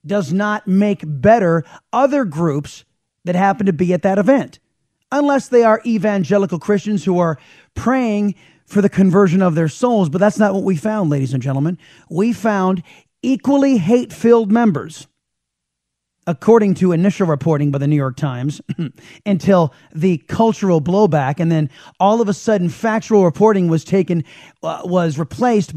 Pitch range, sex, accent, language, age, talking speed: 145-195 Hz, male, American, English, 30-49, 155 wpm